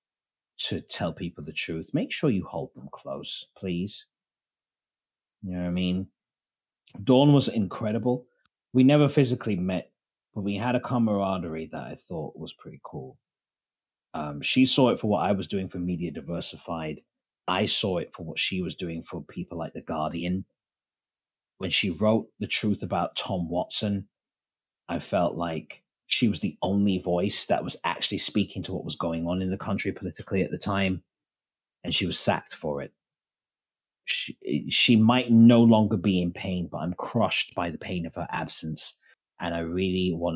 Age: 30-49